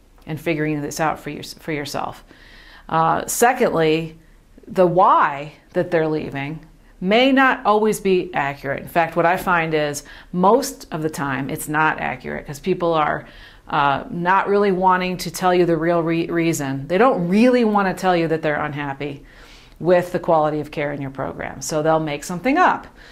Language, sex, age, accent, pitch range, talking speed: English, female, 40-59, American, 155-195 Hz, 175 wpm